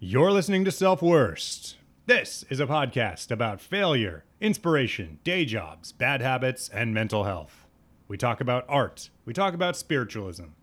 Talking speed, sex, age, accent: 150 wpm, male, 30-49, American